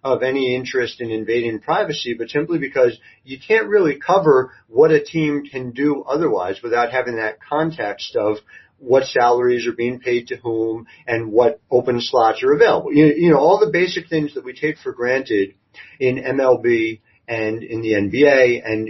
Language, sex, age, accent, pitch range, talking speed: English, male, 40-59, American, 125-185 Hz, 175 wpm